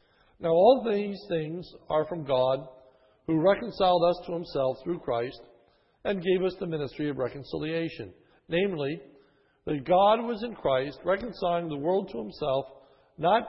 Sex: male